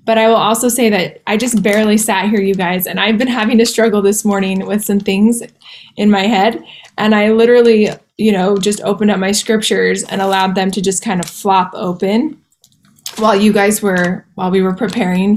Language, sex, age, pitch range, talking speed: English, female, 20-39, 195-230 Hz, 210 wpm